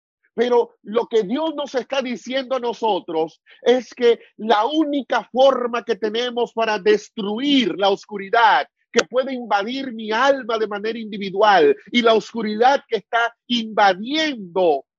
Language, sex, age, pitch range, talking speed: Spanish, male, 40-59, 195-260 Hz, 135 wpm